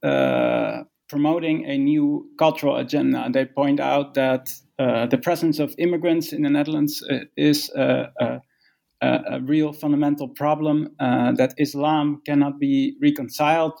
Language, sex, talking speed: English, male, 135 wpm